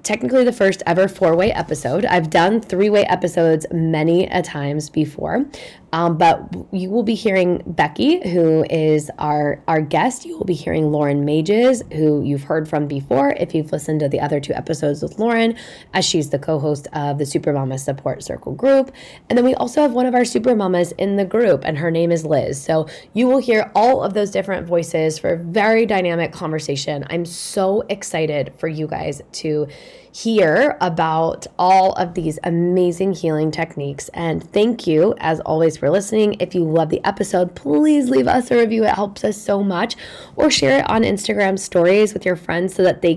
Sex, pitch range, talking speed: female, 155-205 Hz, 195 wpm